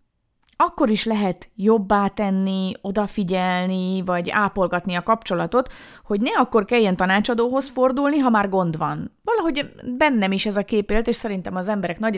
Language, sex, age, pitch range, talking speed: Hungarian, female, 30-49, 185-240 Hz, 160 wpm